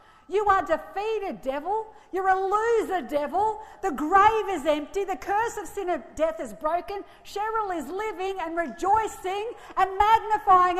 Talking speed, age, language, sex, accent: 150 wpm, 50-69, English, female, Australian